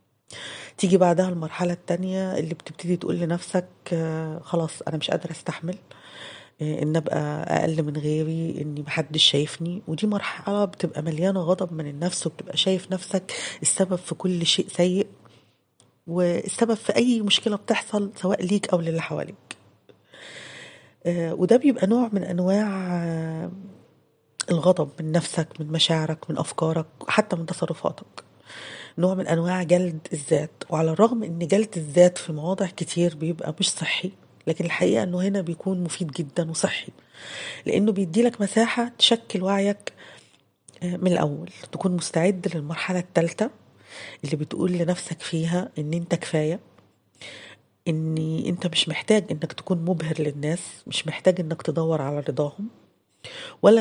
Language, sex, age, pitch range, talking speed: Arabic, female, 30-49, 160-190 Hz, 135 wpm